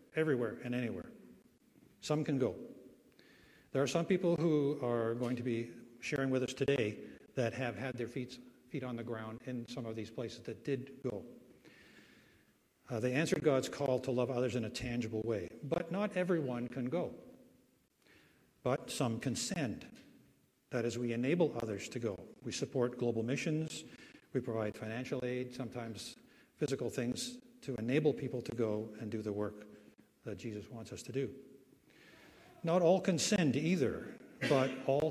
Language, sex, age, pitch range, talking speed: English, male, 60-79, 115-140 Hz, 165 wpm